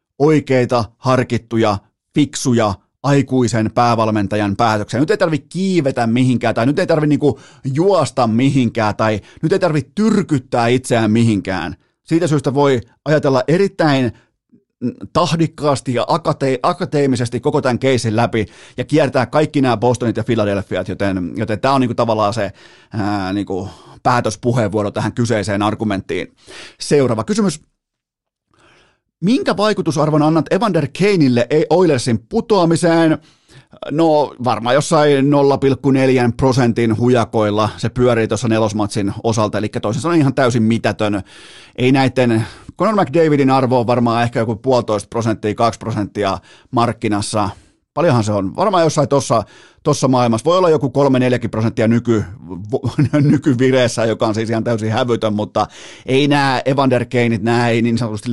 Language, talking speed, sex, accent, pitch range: Finnish, 125 wpm, male, native, 110-145 Hz